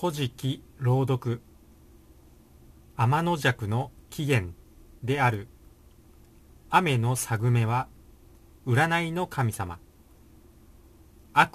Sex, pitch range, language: male, 80-130 Hz, Japanese